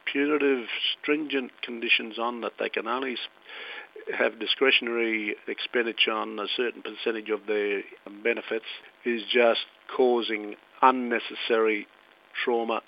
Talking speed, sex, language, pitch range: 105 wpm, male, English, 105-125 Hz